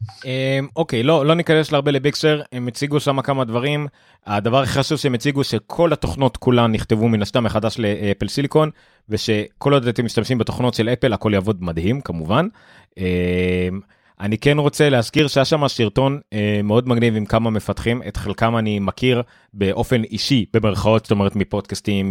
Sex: male